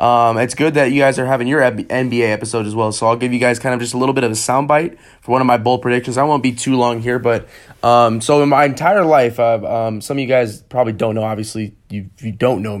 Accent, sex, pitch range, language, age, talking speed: American, male, 110-125 Hz, English, 20-39, 280 wpm